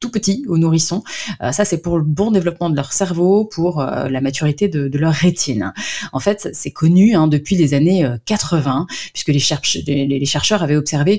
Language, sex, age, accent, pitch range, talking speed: French, female, 30-49, French, 140-180 Hz, 180 wpm